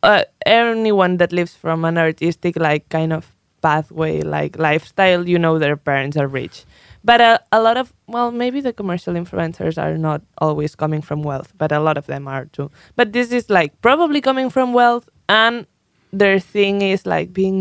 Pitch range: 170-215 Hz